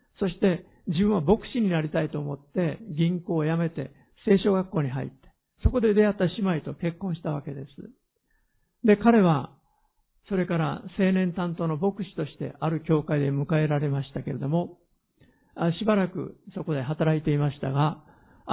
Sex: male